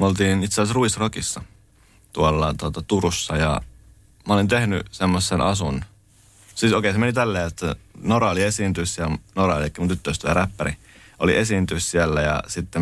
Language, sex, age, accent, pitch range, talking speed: Finnish, male, 30-49, native, 90-105 Hz, 165 wpm